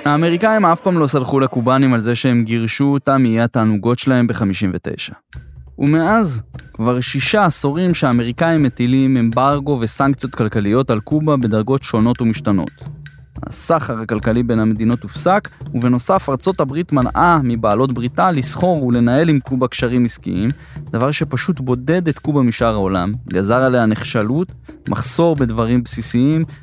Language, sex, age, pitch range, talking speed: Hebrew, male, 20-39, 115-150 Hz, 135 wpm